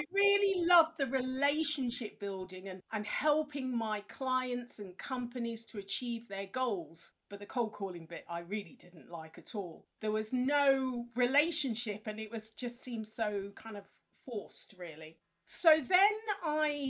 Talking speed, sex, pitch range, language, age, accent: 160 wpm, female, 205-265 Hz, English, 40-59, British